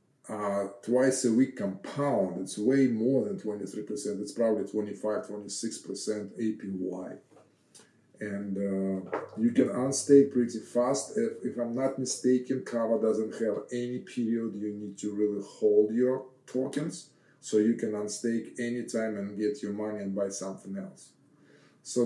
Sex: male